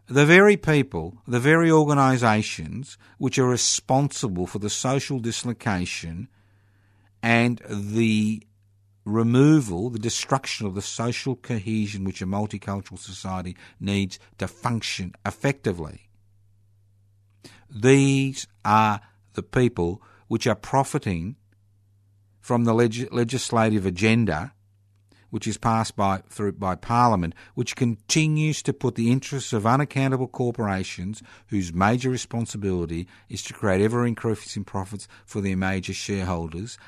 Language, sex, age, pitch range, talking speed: English, male, 50-69, 100-120 Hz, 115 wpm